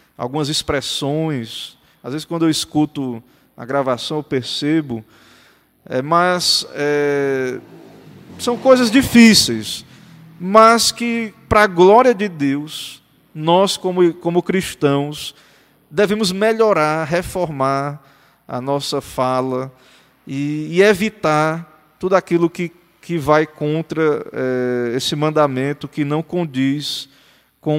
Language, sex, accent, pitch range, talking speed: Portuguese, male, Brazilian, 140-180 Hz, 100 wpm